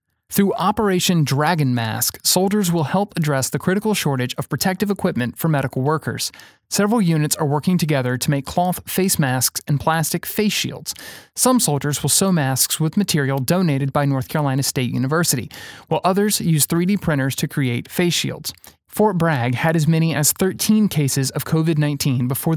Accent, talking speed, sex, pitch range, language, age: American, 170 wpm, male, 135-180 Hz, English, 30-49